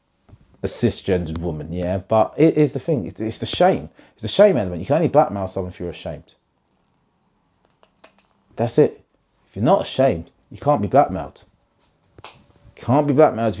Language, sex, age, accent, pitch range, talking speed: English, male, 30-49, British, 115-155 Hz, 170 wpm